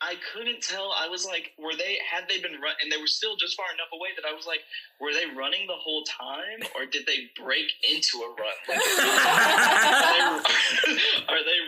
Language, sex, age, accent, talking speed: English, male, 20-39, American, 205 wpm